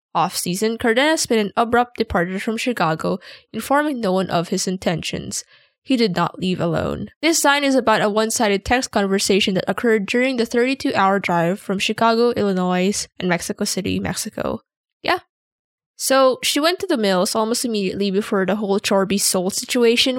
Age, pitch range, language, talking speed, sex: 10-29, 190-245 Hz, English, 160 wpm, female